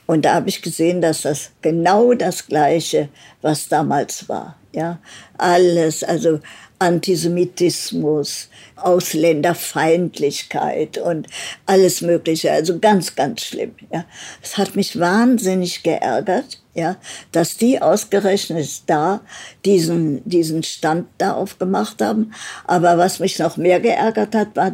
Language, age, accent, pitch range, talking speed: English, 60-79, German, 170-220 Hz, 120 wpm